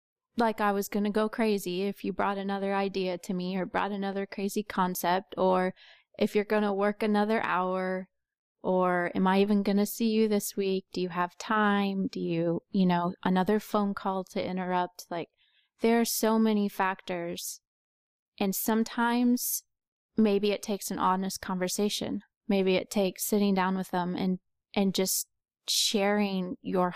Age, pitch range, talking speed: 20-39, 185-215 Hz, 170 wpm